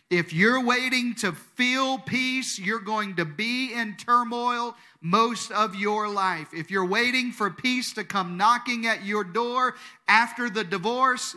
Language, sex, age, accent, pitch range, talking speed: English, male, 50-69, American, 175-230 Hz, 160 wpm